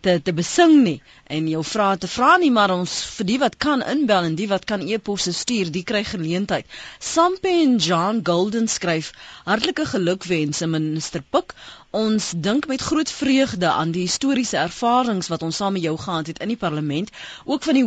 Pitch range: 170-235 Hz